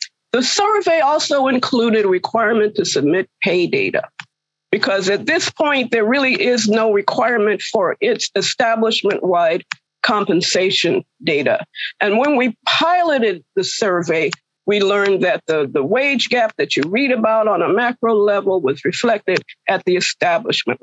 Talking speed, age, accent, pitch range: 145 wpm, 50-69, American, 195-260 Hz